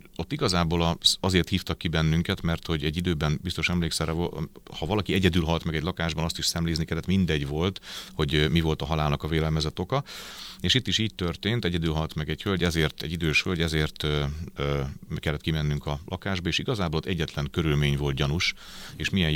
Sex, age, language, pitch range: male, 30-49, Hungarian, 80-95 Hz